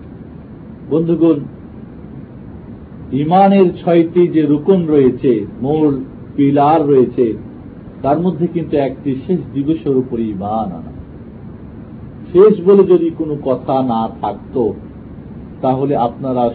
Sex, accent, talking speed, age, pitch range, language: male, native, 45 wpm, 50-69, 120-165 Hz, Bengali